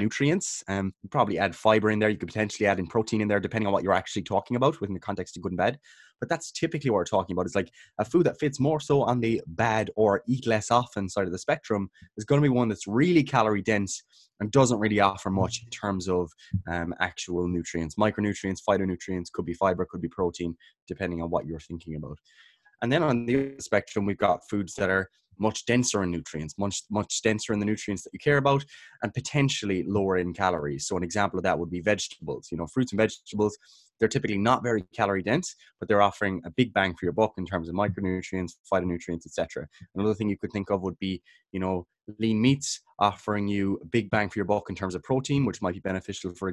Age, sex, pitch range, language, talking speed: 20-39, male, 95-115 Hz, English, 240 wpm